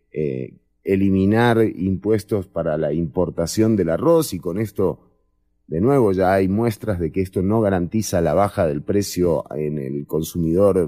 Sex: male